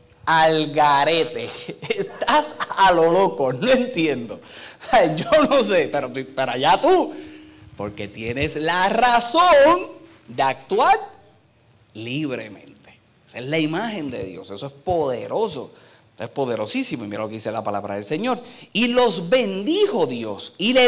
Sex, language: male, Spanish